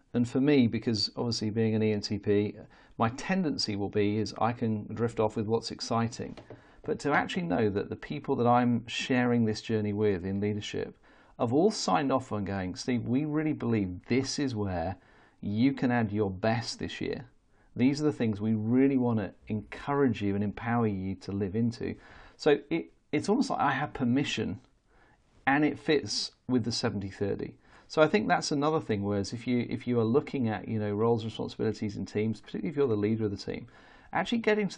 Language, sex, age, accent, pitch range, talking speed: English, male, 40-59, British, 105-125 Hz, 200 wpm